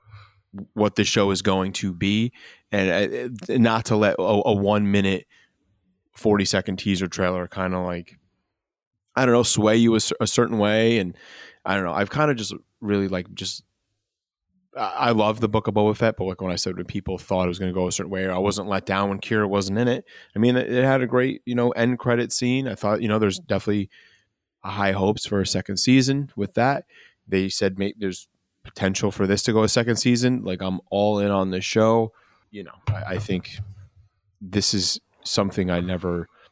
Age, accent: 20-39, American